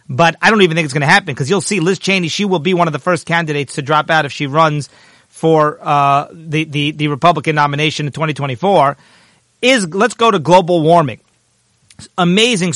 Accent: American